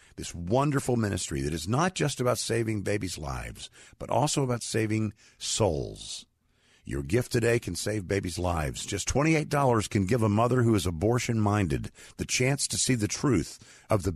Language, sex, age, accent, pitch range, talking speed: English, male, 50-69, American, 100-125 Hz, 170 wpm